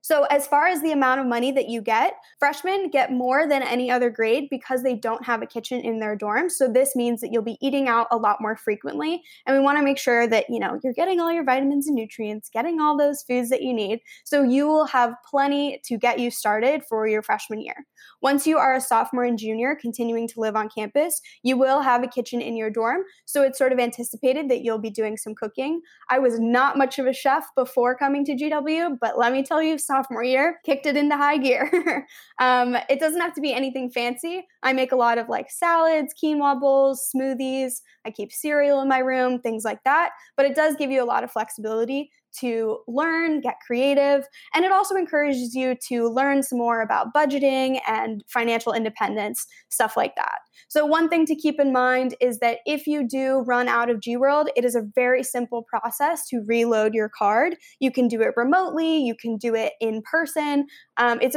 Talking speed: 220 wpm